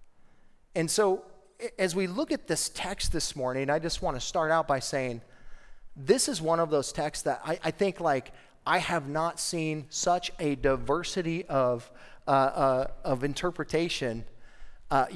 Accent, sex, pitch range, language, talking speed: American, male, 130-170 Hz, English, 165 wpm